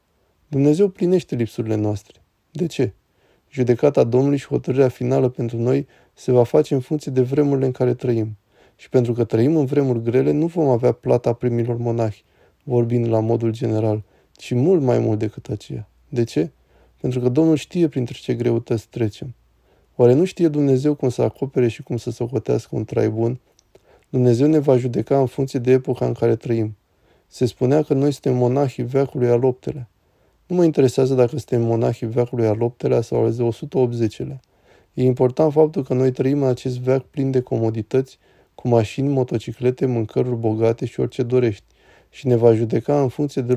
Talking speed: 180 wpm